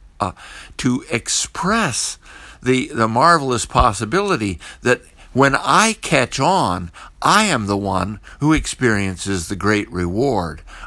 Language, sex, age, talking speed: English, male, 60-79, 115 wpm